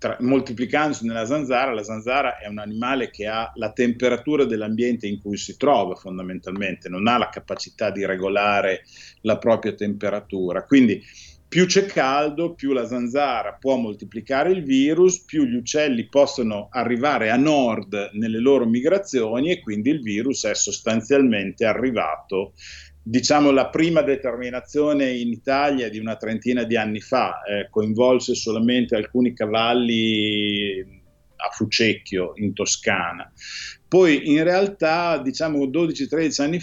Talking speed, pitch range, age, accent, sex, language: 135 wpm, 105-140 Hz, 50-69, native, male, Italian